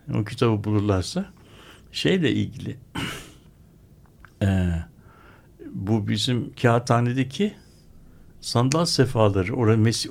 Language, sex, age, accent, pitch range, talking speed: Turkish, male, 60-79, native, 100-125 Hz, 70 wpm